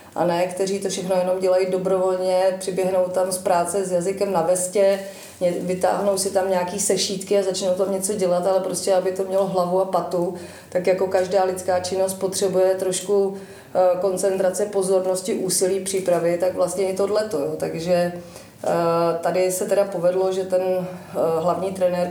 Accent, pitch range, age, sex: native, 180-190 Hz, 30-49, female